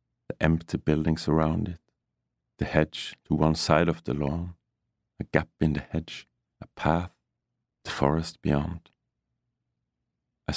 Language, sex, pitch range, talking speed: English, male, 75-90 Hz, 135 wpm